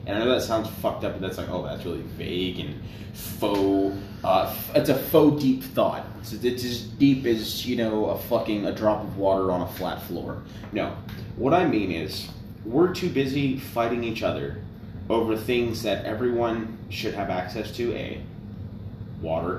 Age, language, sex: 30-49, English, male